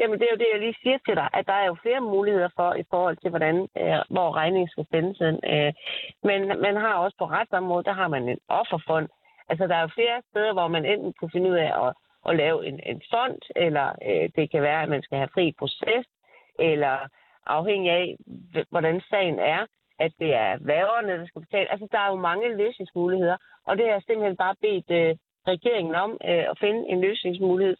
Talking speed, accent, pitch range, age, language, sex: 205 wpm, native, 165-210 Hz, 40-59, Danish, female